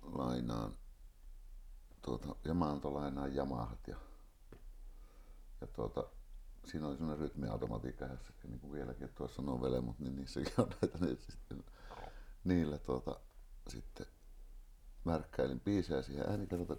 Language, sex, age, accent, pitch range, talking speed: Finnish, male, 60-79, native, 65-85 Hz, 120 wpm